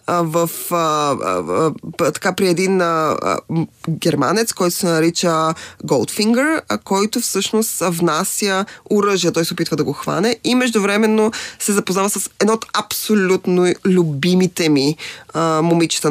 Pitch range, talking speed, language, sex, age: 165-205 Hz, 135 wpm, Bulgarian, female, 20-39